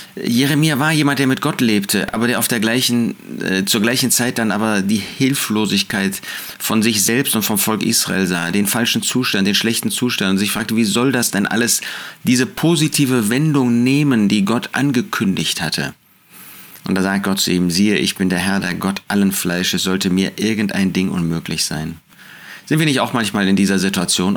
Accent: German